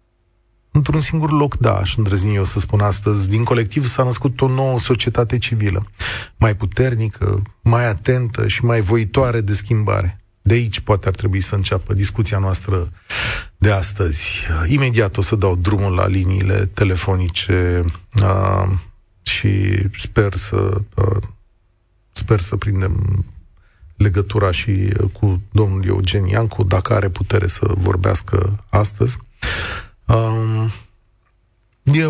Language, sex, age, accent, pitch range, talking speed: Romanian, male, 30-49, native, 95-110 Hz, 120 wpm